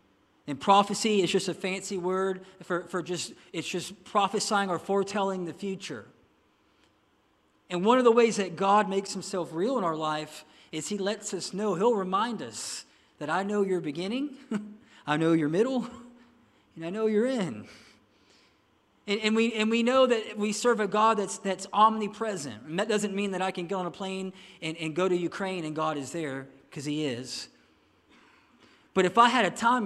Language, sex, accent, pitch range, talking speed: English, male, American, 170-215 Hz, 190 wpm